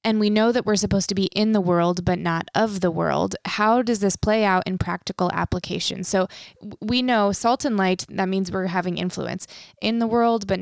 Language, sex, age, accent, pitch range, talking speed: English, female, 20-39, American, 175-200 Hz, 220 wpm